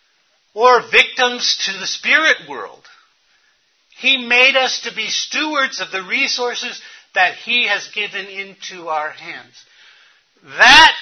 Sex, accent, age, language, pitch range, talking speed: male, American, 60-79, English, 195-255 Hz, 125 wpm